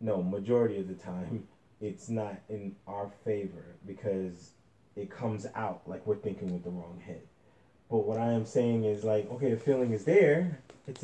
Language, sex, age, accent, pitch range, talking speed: English, male, 20-39, American, 105-130 Hz, 185 wpm